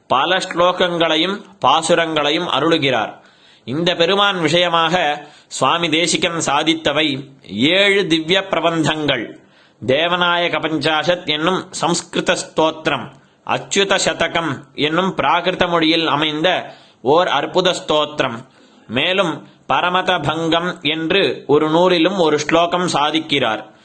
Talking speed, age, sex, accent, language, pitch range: 90 wpm, 30-49, male, native, Tamil, 145-165 Hz